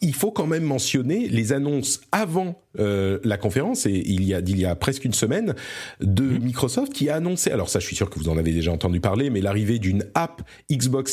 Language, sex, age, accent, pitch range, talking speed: French, male, 40-59, French, 95-140 Hz, 230 wpm